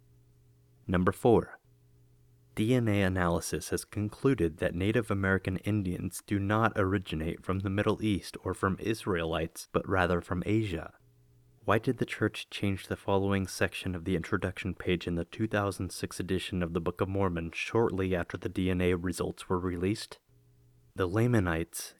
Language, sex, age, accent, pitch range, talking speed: English, male, 30-49, American, 85-100 Hz, 145 wpm